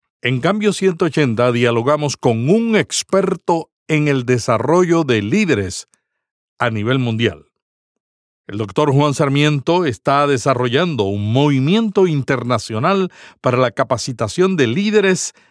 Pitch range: 120-170 Hz